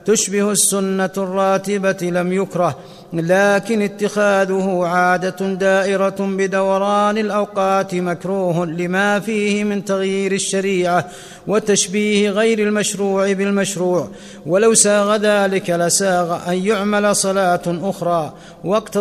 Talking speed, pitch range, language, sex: 95 wpm, 180-205 Hz, Arabic, male